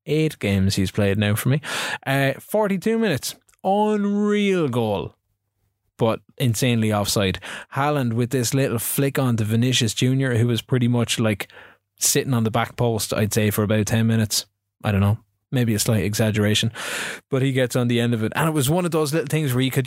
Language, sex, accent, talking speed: English, male, Irish, 200 wpm